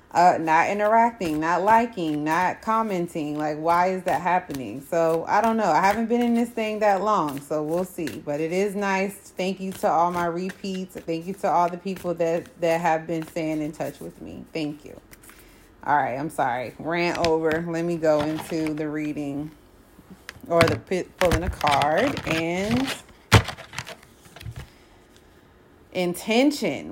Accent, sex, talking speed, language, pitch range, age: American, female, 165 wpm, English, 160-200 Hz, 30-49